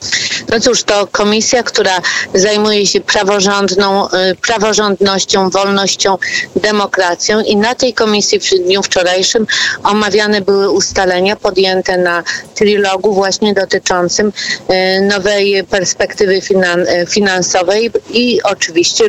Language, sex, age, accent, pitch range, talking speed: Polish, female, 40-59, native, 185-215 Hz, 95 wpm